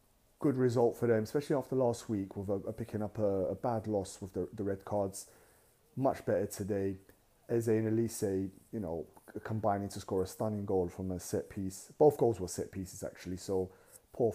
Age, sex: 30-49, male